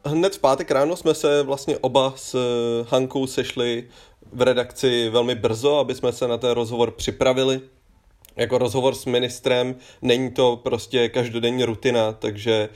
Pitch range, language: 110-125 Hz, Czech